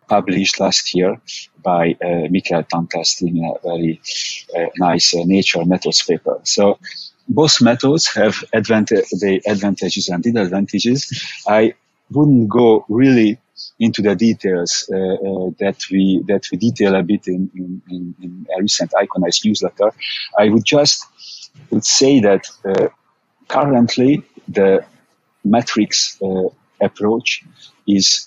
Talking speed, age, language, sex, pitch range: 130 wpm, 50-69, English, male, 90-110 Hz